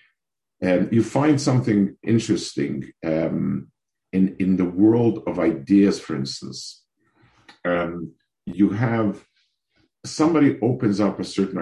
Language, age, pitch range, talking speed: English, 50-69, 90-115 Hz, 115 wpm